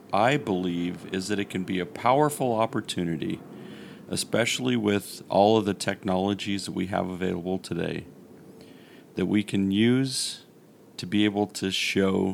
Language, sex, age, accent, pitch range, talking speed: English, male, 40-59, American, 90-105 Hz, 145 wpm